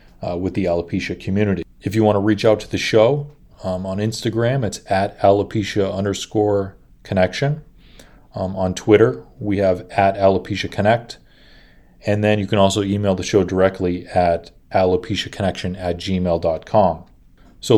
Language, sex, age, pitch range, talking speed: English, male, 30-49, 95-115 Hz, 150 wpm